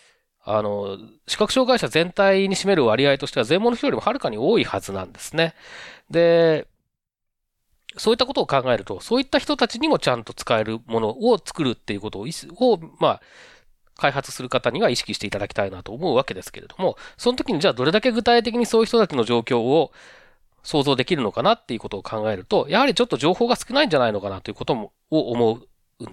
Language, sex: Japanese, male